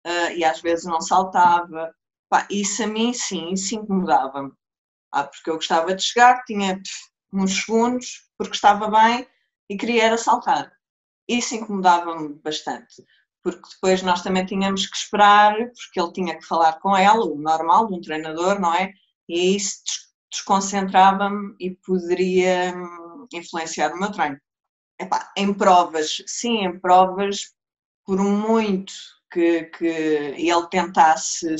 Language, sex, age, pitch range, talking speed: Portuguese, female, 20-39, 170-210 Hz, 140 wpm